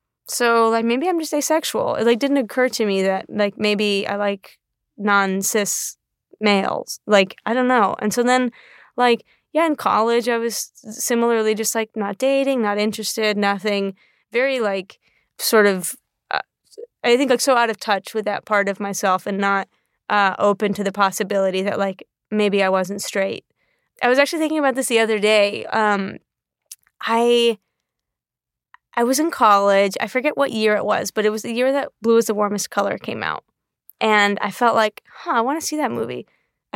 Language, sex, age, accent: English, female, 20-39, American